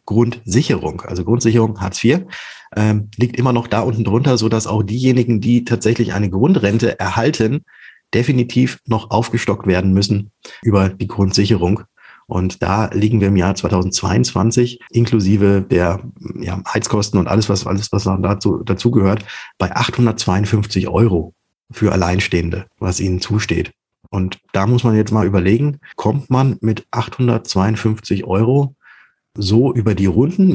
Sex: male